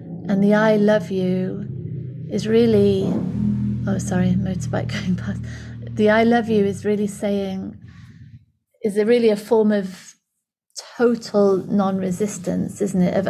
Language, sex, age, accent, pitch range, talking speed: English, female, 30-49, British, 185-210 Hz, 135 wpm